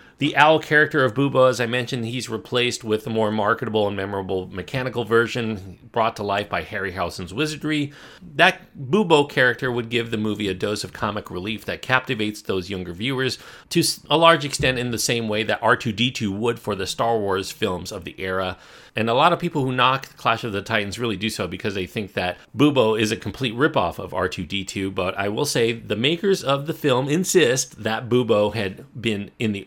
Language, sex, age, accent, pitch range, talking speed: English, male, 40-59, American, 100-140 Hz, 205 wpm